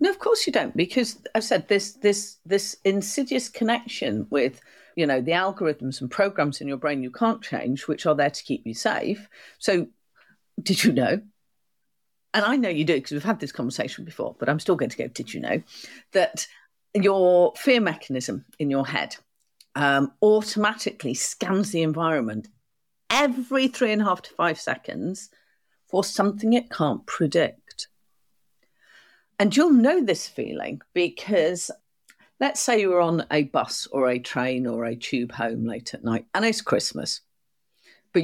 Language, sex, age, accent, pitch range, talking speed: English, female, 50-69, British, 140-215 Hz, 170 wpm